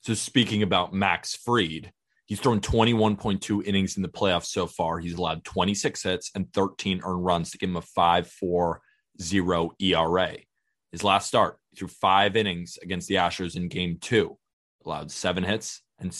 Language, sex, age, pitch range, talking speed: English, male, 20-39, 90-110 Hz, 165 wpm